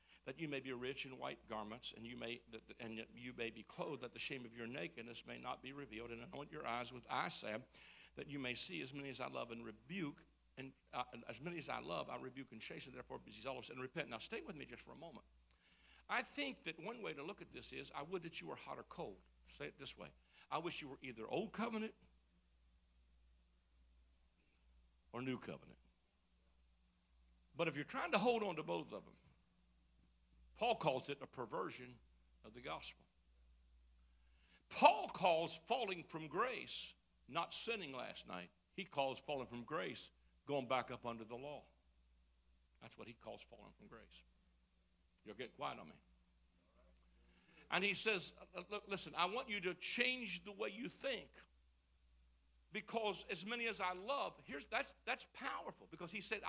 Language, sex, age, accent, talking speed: English, male, 60-79, American, 190 wpm